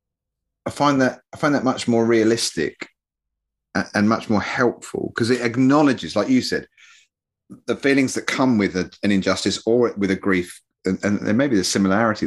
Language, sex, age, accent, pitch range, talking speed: English, male, 30-49, British, 95-115 Hz, 190 wpm